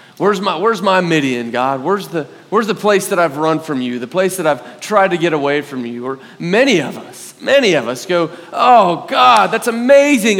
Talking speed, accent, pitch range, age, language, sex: 220 wpm, American, 140-220 Hz, 30-49, English, male